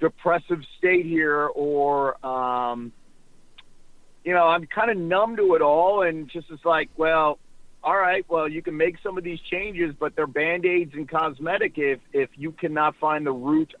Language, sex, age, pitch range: English, male, 50-69, 145-205 Hz